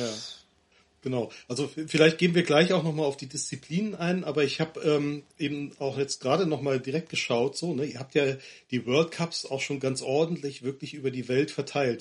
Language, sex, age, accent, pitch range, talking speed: German, male, 40-59, German, 125-155 Hz, 205 wpm